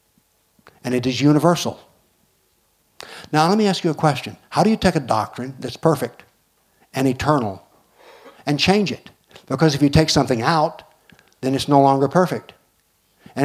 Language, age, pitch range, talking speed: English, 60-79, 120-150 Hz, 160 wpm